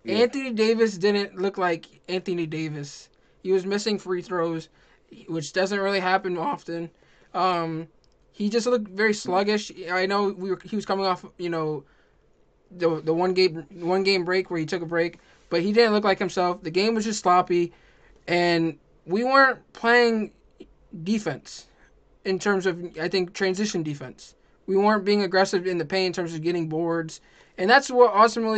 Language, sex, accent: English, male, American